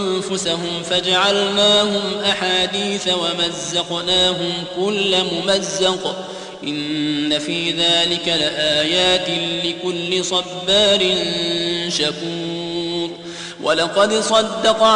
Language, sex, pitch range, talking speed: Arabic, male, 175-215 Hz, 60 wpm